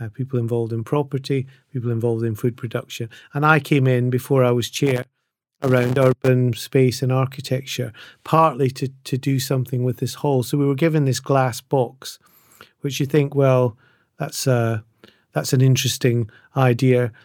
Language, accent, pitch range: English, British, 125-140 Hz